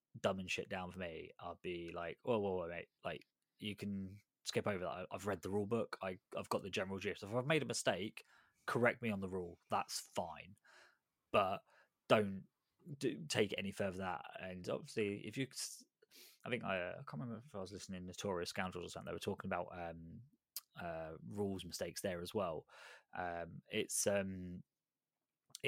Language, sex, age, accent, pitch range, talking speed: English, male, 20-39, British, 90-105 Hz, 195 wpm